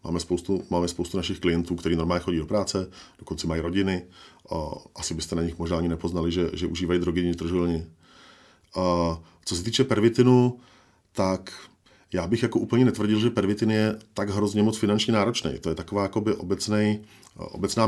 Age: 40-59